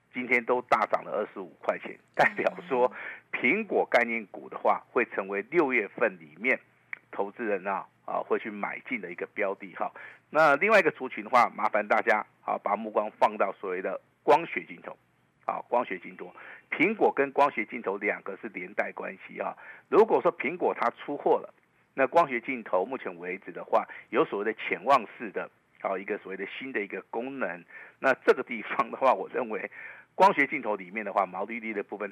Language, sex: Chinese, male